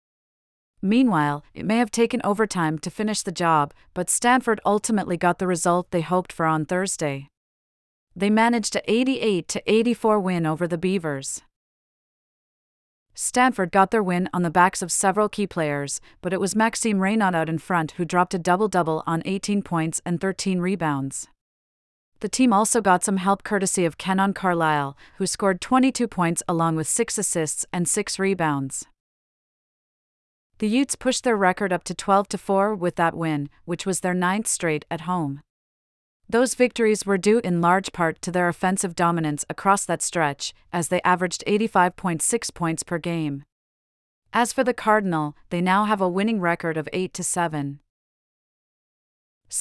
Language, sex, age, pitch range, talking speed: English, female, 40-59, 165-205 Hz, 155 wpm